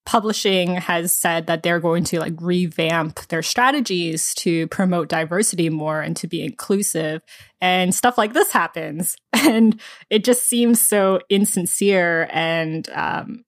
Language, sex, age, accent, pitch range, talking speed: English, female, 20-39, American, 170-210 Hz, 145 wpm